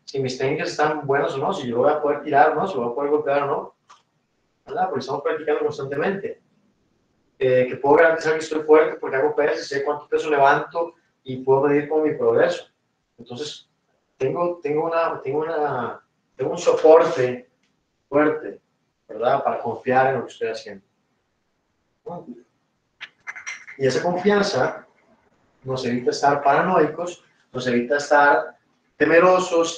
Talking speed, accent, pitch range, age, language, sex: 155 wpm, Mexican, 150-220 Hz, 30-49, Spanish, male